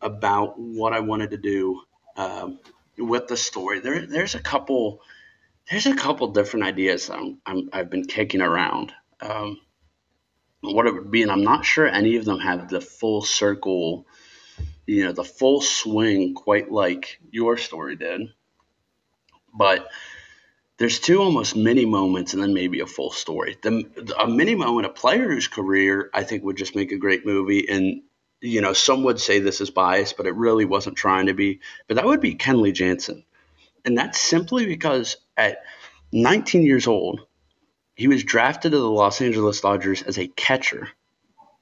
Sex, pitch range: male, 95-120 Hz